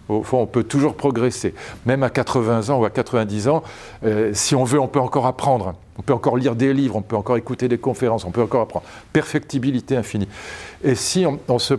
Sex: male